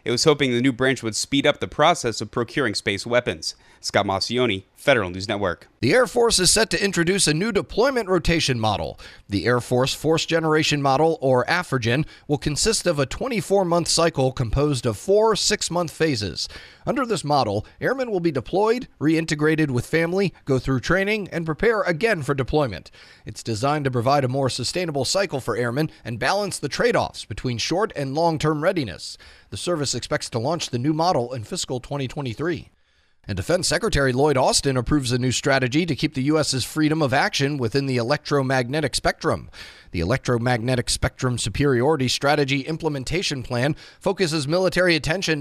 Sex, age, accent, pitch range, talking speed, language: male, 30-49, American, 130-170 Hz, 170 wpm, English